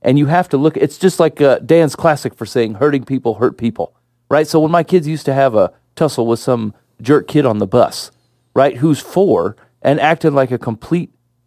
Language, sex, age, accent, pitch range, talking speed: English, male, 30-49, American, 120-160 Hz, 220 wpm